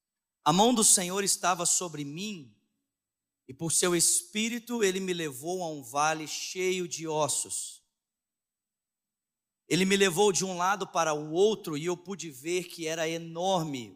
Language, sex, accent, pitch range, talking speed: Portuguese, male, Brazilian, 160-215 Hz, 155 wpm